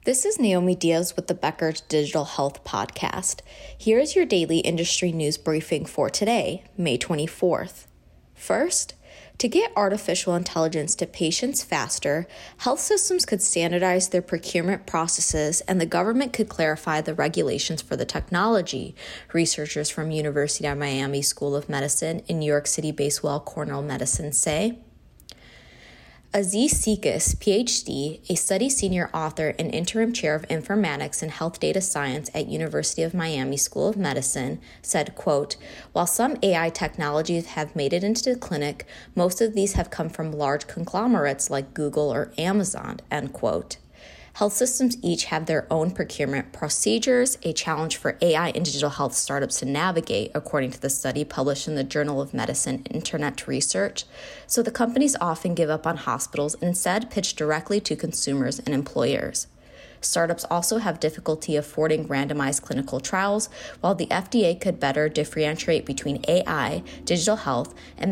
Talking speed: 155 wpm